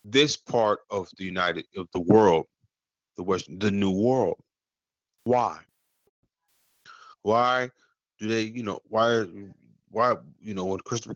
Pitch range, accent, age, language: 105-130 Hz, American, 30-49, Japanese